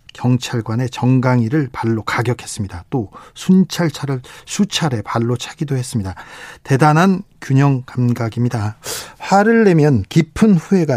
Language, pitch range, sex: Korean, 125-170 Hz, male